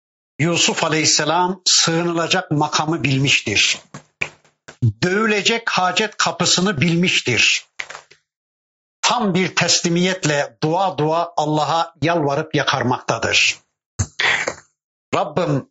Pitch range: 150-190 Hz